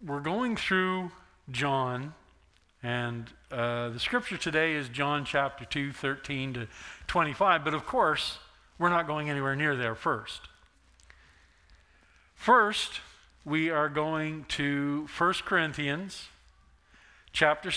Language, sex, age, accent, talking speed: English, male, 50-69, American, 115 wpm